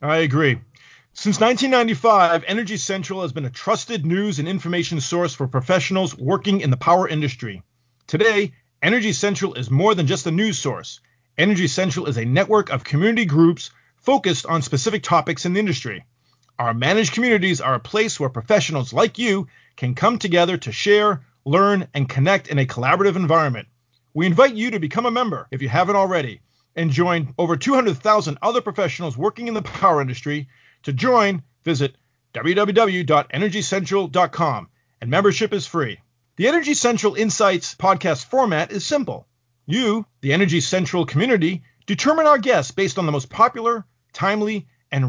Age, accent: 40-59, American